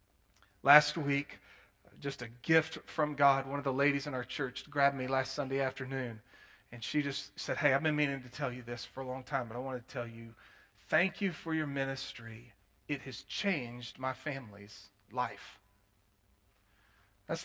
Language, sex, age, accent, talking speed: English, male, 40-59, American, 180 wpm